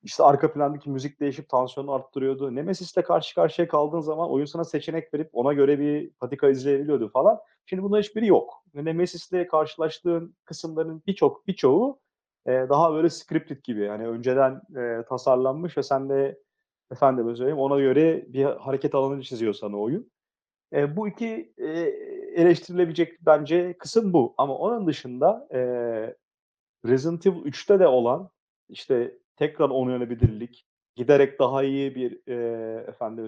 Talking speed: 140 wpm